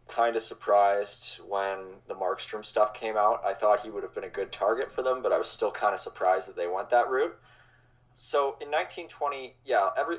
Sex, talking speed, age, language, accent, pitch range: male, 205 wpm, 20-39, English, American, 105-145 Hz